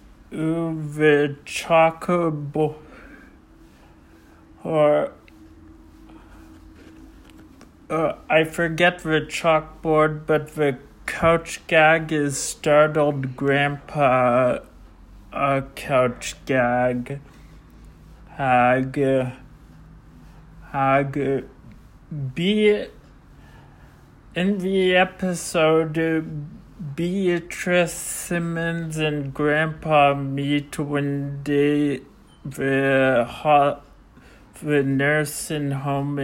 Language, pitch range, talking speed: English, 135-160 Hz, 70 wpm